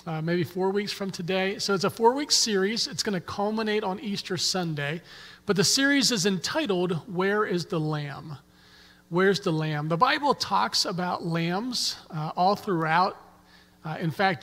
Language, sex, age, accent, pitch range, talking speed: English, male, 40-59, American, 170-205 Hz, 170 wpm